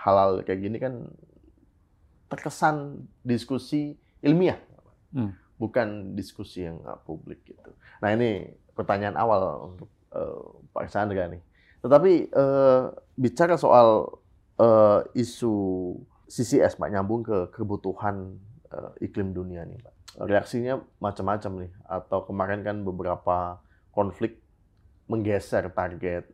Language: Indonesian